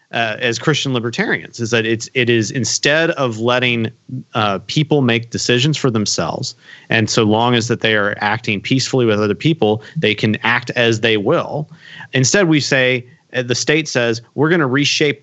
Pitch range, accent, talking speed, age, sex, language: 115-155 Hz, American, 190 wpm, 40-59, male, English